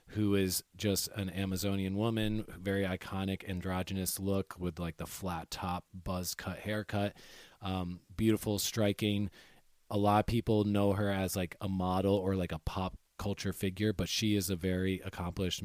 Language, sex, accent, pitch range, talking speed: English, male, American, 95-110 Hz, 165 wpm